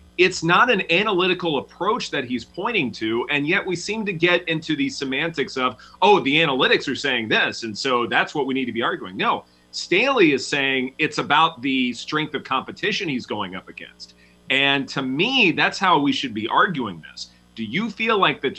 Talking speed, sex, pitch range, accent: 200 wpm, male, 110-155 Hz, American